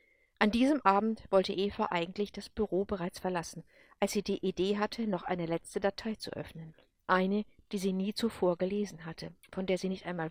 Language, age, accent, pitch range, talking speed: English, 50-69, German, 170-210 Hz, 190 wpm